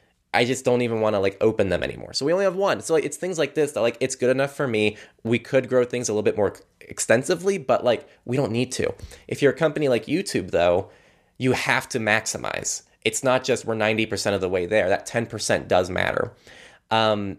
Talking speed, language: 235 wpm, English